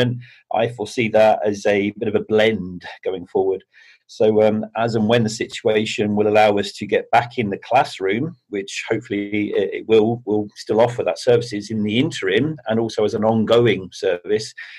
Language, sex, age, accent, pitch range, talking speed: English, male, 40-59, British, 105-120 Hz, 185 wpm